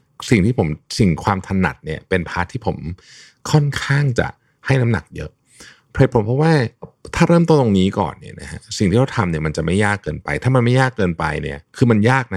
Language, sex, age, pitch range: Thai, male, 60-79, 90-130 Hz